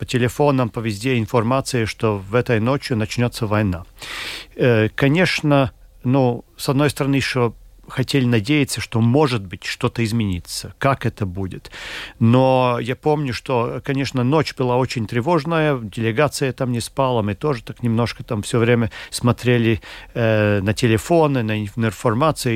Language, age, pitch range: Russian, 40-59, 110-135 Hz